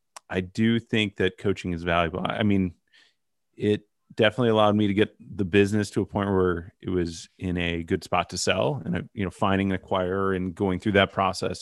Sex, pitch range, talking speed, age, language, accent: male, 95-110 Hz, 205 wpm, 30-49, English, American